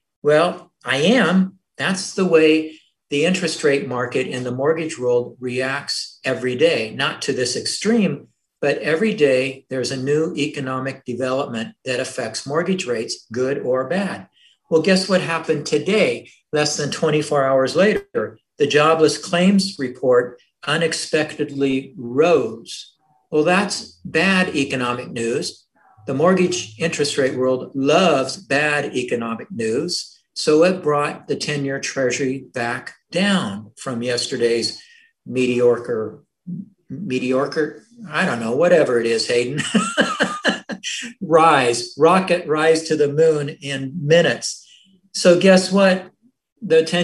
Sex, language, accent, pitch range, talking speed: male, English, American, 130-180 Hz, 125 wpm